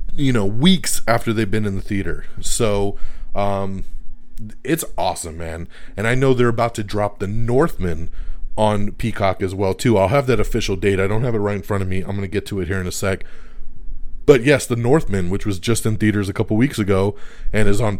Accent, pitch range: American, 95-125 Hz